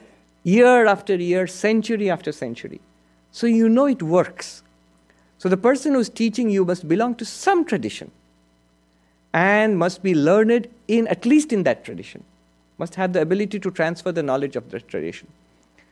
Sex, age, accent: male, 50-69, Indian